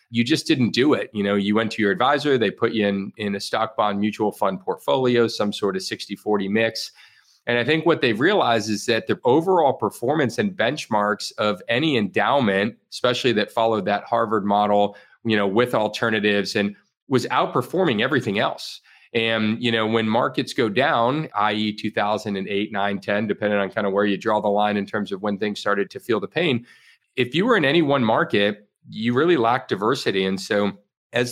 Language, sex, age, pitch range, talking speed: English, male, 40-59, 100-115 Hz, 195 wpm